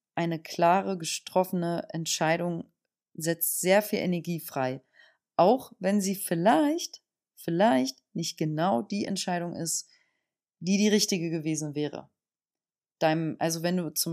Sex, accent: female, German